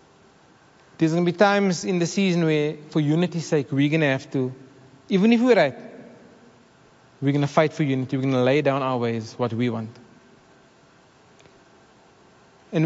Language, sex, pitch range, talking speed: English, male, 145-195 Hz, 175 wpm